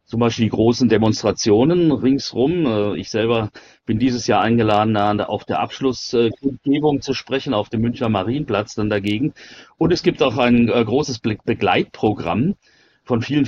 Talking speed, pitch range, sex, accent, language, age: 145 wpm, 105-125 Hz, male, German, German, 40-59